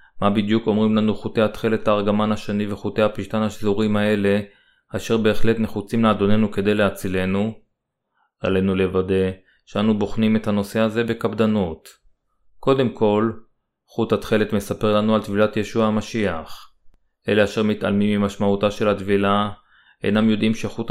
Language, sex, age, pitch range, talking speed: Hebrew, male, 30-49, 100-110 Hz, 130 wpm